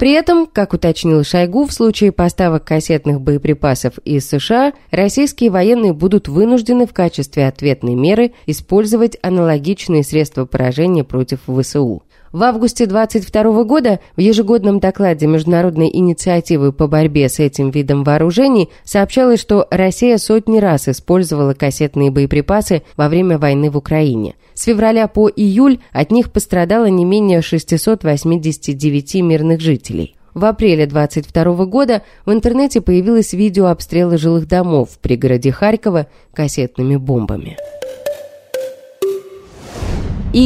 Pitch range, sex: 150-220 Hz, female